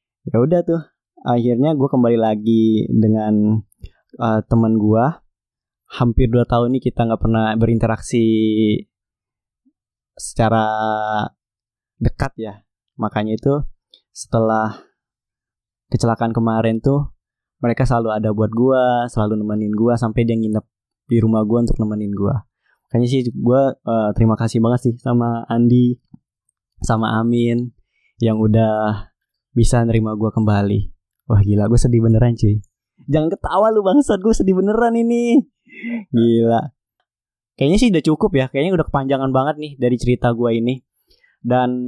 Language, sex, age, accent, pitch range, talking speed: Indonesian, male, 20-39, native, 110-130 Hz, 135 wpm